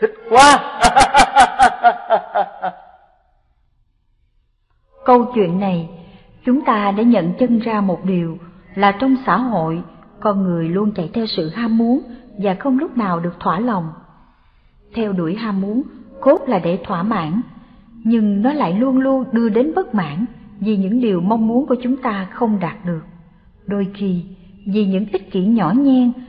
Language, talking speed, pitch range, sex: Vietnamese, 155 wpm, 190-250 Hz, female